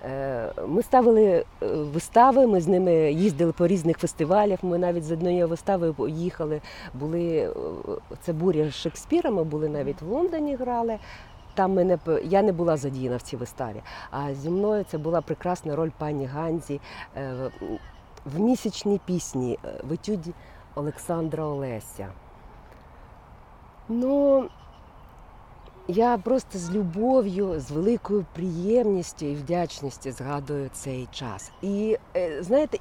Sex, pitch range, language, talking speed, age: female, 145-205 Hz, Ukrainian, 120 wpm, 40-59